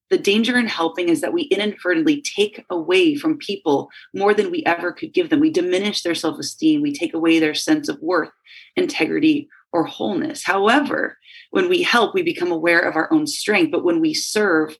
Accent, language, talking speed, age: American, English, 195 wpm, 30-49